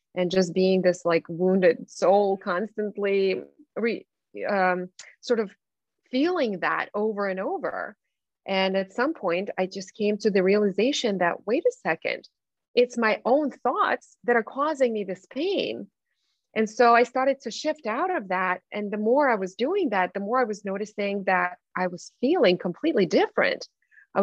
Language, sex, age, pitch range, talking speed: English, female, 30-49, 190-260 Hz, 170 wpm